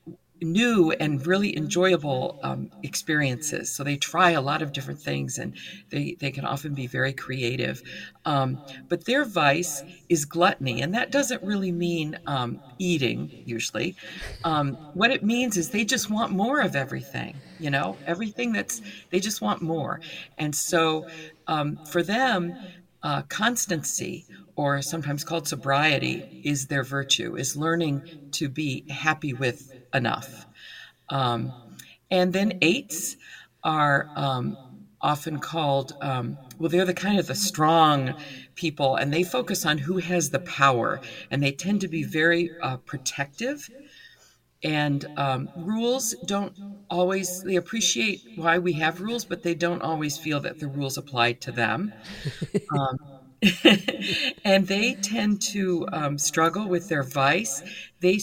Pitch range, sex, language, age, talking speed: 140-185 Hz, female, English, 50-69, 145 wpm